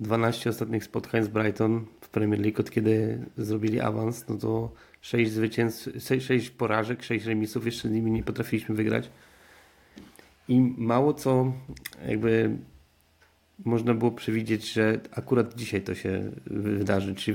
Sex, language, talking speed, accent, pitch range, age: male, Polish, 140 wpm, native, 100-115 Hz, 30-49